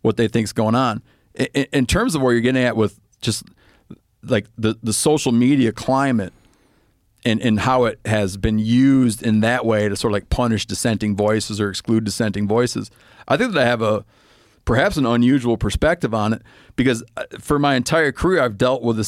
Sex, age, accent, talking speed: male, 40-59, American, 200 wpm